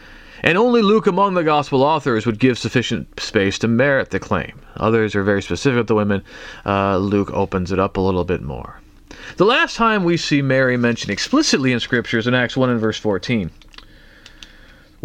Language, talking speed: English, 190 wpm